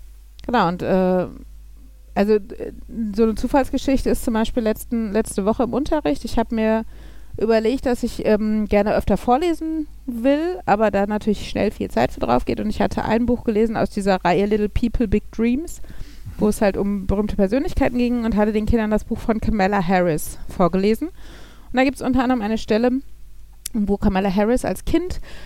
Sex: female